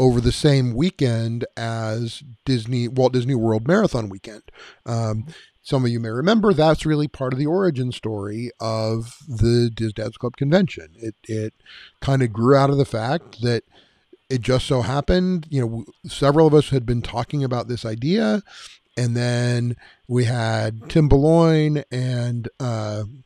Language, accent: English, American